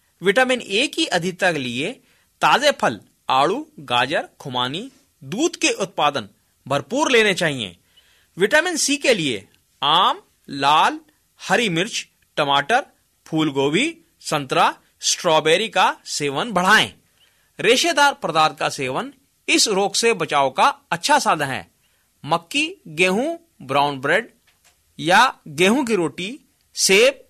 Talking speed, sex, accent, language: 115 wpm, male, native, Hindi